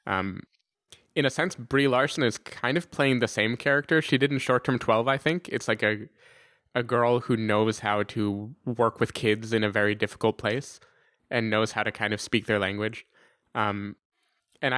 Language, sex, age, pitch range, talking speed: English, male, 20-39, 105-130 Hz, 200 wpm